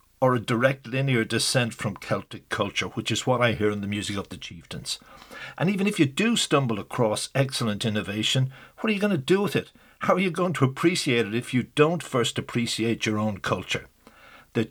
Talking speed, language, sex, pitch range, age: 210 wpm, English, male, 115-145 Hz, 60-79